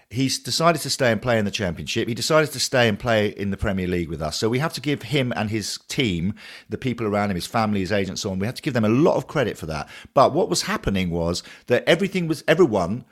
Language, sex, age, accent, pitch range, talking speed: English, male, 40-59, British, 100-135 Hz, 275 wpm